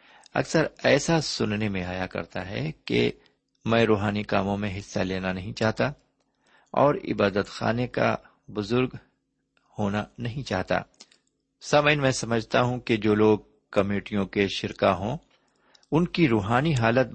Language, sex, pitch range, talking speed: Urdu, male, 95-130 Hz, 135 wpm